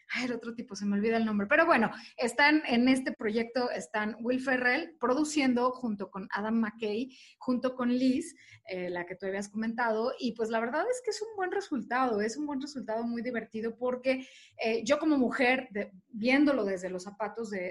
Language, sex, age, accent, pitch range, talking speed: Spanish, female, 30-49, Mexican, 210-255 Hz, 195 wpm